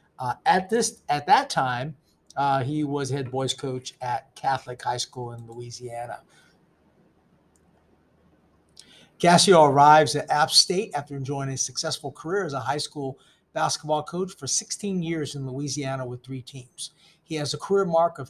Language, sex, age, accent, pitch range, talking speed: English, male, 50-69, American, 135-175 Hz, 155 wpm